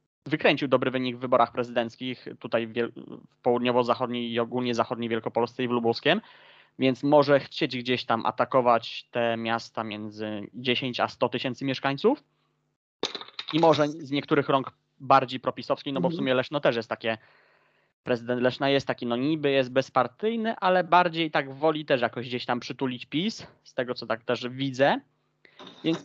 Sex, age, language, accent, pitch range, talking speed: male, 20-39, Polish, native, 125-165 Hz, 165 wpm